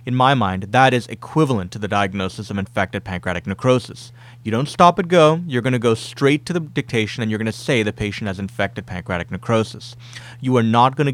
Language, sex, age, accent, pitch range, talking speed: English, male, 30-49, American, 105-130 Hz, 210 wpm